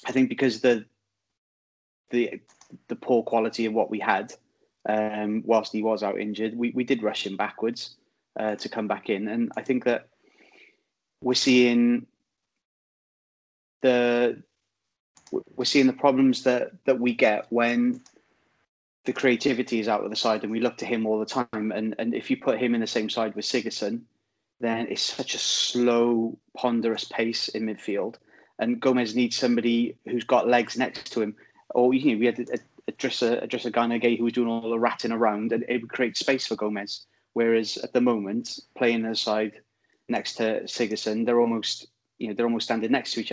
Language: English